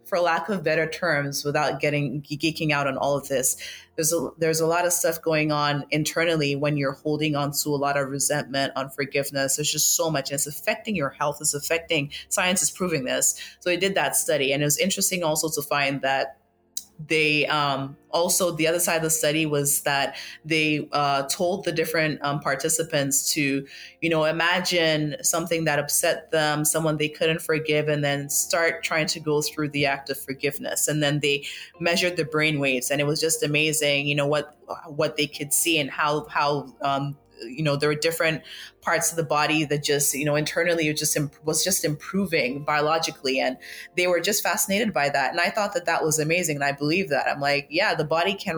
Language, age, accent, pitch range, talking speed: English, 20-39, American, 145-165 Hz, 210 wpm